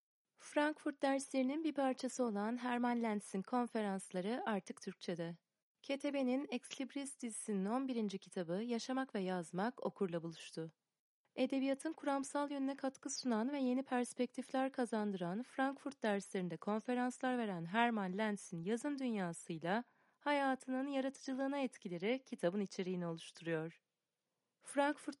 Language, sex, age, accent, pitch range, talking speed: Turkish, female, 30-49, native, 195-260 Hz, 105 wpm